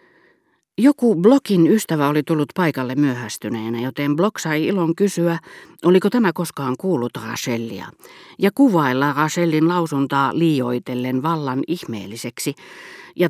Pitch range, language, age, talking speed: 125-170 Hz, Finnish, 40-59, 115 wpm